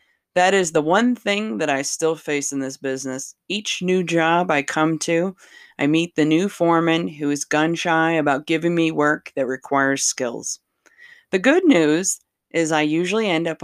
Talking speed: 180 wpm